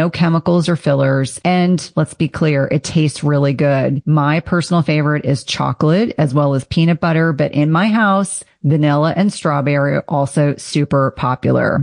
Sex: female